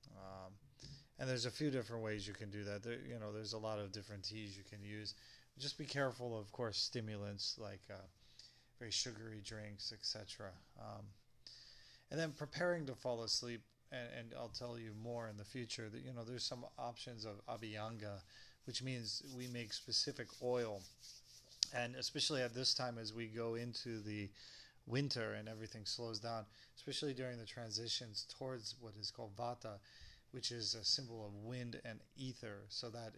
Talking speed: 180 wpm